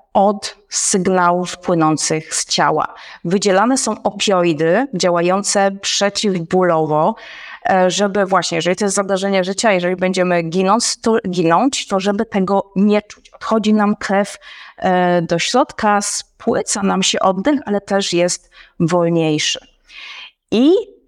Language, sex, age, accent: Polish, female, 30-49, native